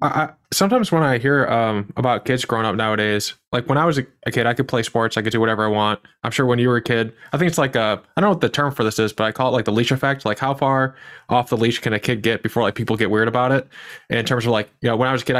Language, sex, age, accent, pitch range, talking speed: English, male, 20-39, American, 110-130 Hz, 330 wpm